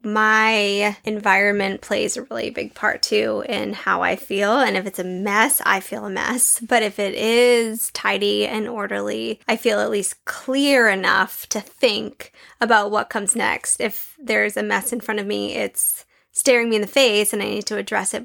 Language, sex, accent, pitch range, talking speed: English, female, American, 210-230 Hz, 195 wpm